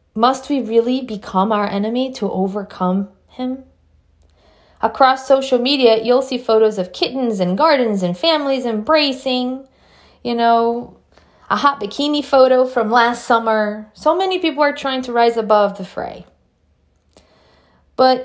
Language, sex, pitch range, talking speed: English, female, 195-260 Hz, 140 wpm